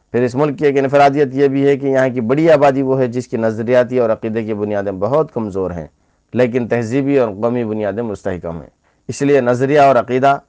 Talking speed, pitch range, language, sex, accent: 225 wpm, 110-135 Hz, English, male, Indian